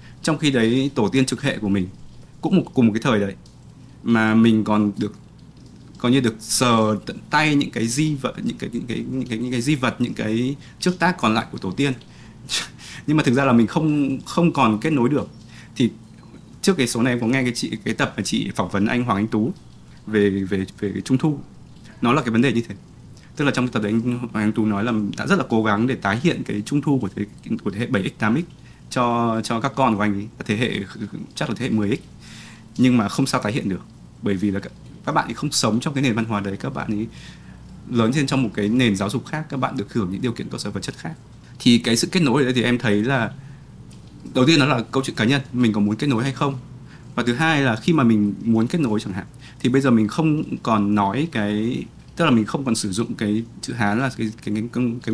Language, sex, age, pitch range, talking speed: Vietnamese, male, 20-39, 110-135 Hz, 265 wpm